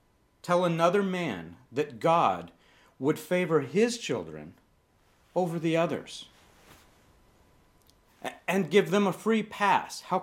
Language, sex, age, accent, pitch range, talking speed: English, male, 40-59, American, 135-190 Hz, 110 wpm